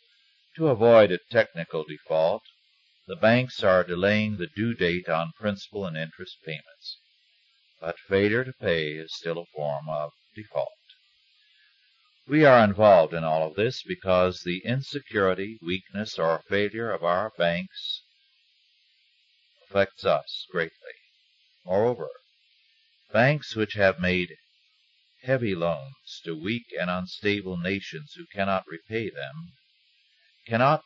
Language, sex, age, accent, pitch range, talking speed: English, male, 50-69, American, 85-120 Hz, 125 wpm